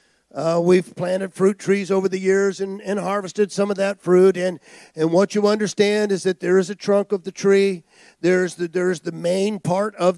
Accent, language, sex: American, English, male